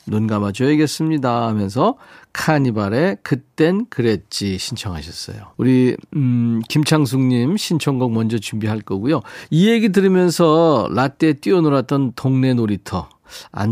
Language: Korean